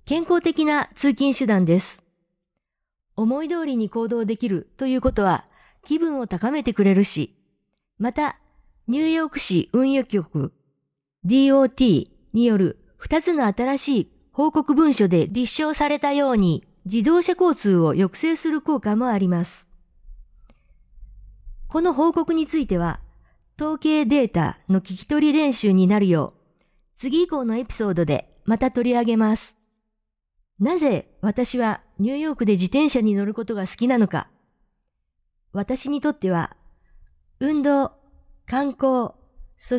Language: Japanese